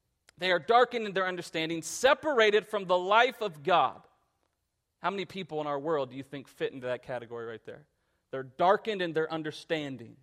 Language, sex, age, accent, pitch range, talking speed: English, male, 40-59, American, 155-220 Hz, 190 wpm